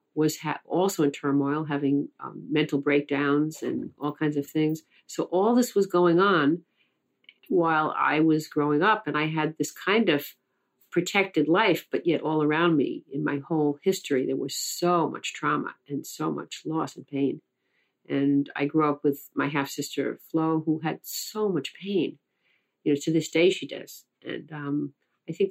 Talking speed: 180 wpm